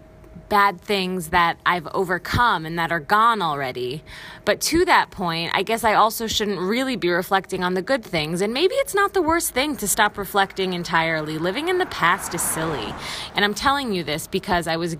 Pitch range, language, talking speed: 170-215 Hz, English, 205 wpm